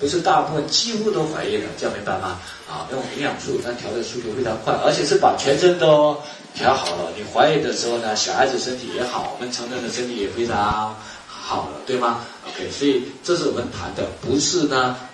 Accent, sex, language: native, male, Chinese